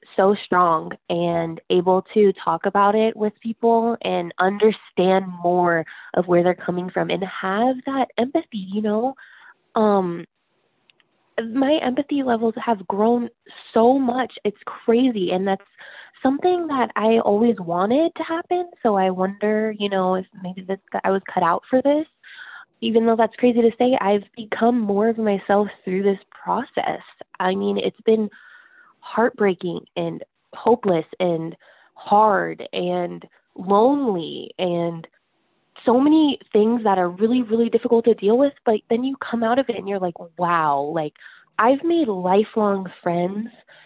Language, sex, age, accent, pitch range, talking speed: English, female, 20-39, American, 185-240 Hz, 150 wpm